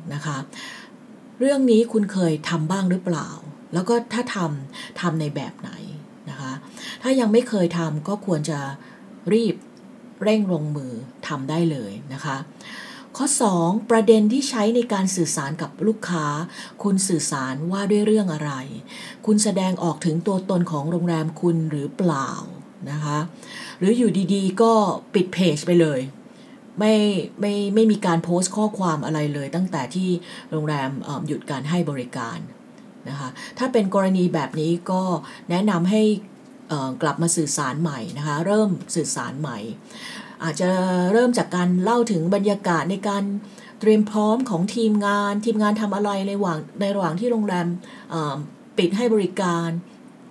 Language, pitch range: English, 165-215 Hz